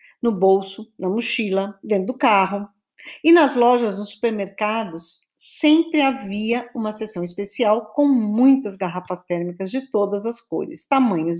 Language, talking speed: Portuguese, 135 wpm